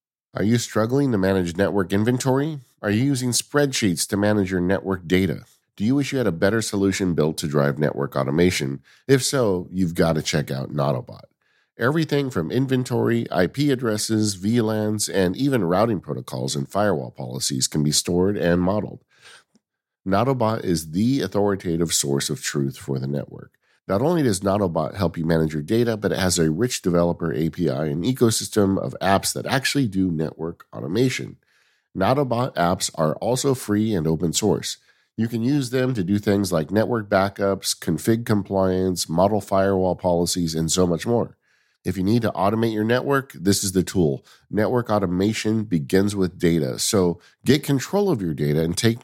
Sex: male